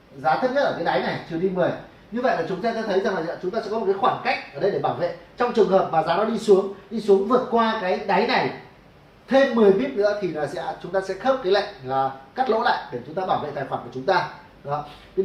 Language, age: Vietnamese, 30-49